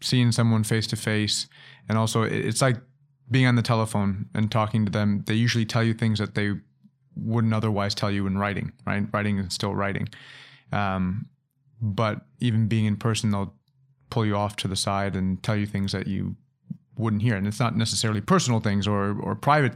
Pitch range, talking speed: 105-120 Hz, 195 wpm